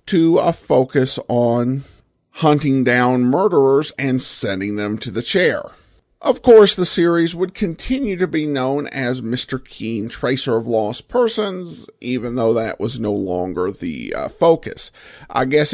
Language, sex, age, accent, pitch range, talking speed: English, male, 50-69, American, 120-165 Hz, 155 wpm